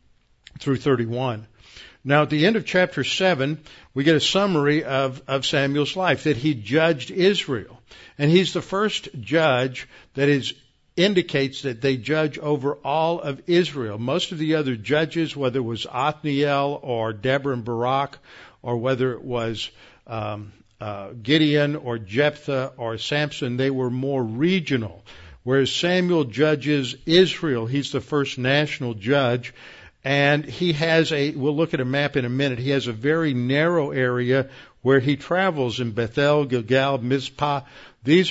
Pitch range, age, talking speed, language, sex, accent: 125-150 Hz, 60-79, 155 wpm, English, male, American